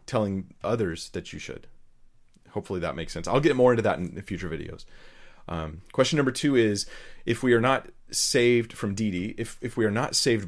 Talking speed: 205 wpm